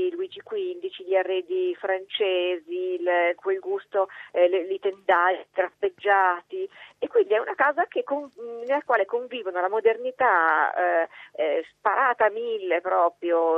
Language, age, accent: Italian, 40-59, native